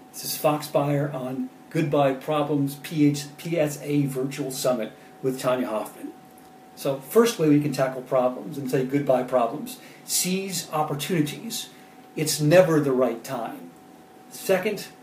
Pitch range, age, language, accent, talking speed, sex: 140-165 Hz, 40-59, English, American, 125 wpm, male